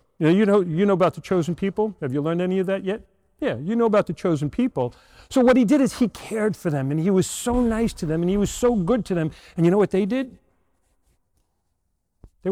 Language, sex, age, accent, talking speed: English, male, 40-59, American, 255 wpm